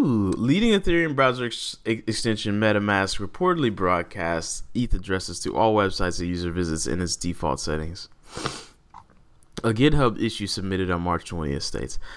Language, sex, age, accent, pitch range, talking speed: English, male, 20-39, American, 85-115 Hz, 135 wpm